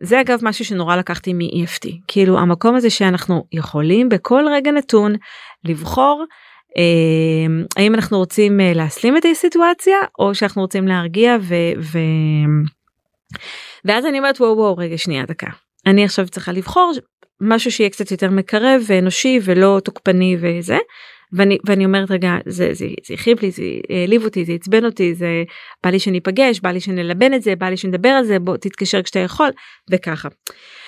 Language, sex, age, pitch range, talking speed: Hebrew, female, 30-49, 180-240 Hz, 165 wpm